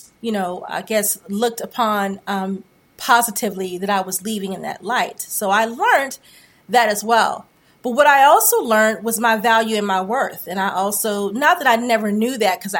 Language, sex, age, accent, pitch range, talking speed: English, female, 30-49, American, 210-255 Hz, 195 wpm